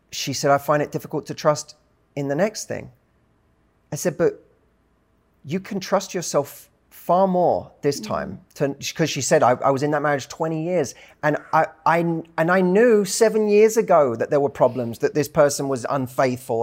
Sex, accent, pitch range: male, British, 125-185 Hz